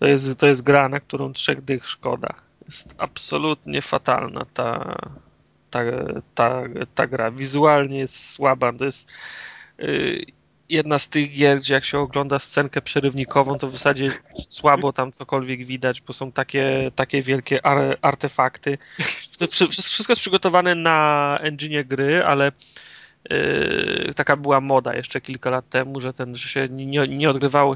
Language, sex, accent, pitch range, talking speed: Polish, male, native, 130-145 Hz, 140 wpm